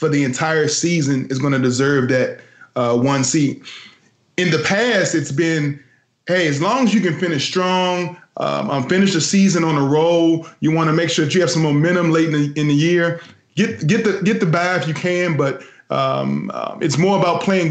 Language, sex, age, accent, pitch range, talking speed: English, male, 20-39, American, 145-180 Hz, 220 wpm